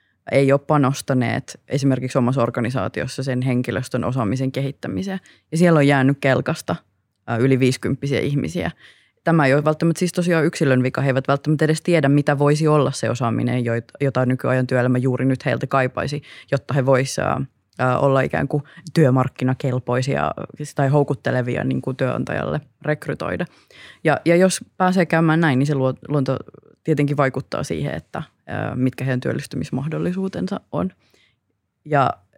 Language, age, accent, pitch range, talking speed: Finnish, 20-39, native, 130-155 Hz, 135 wpm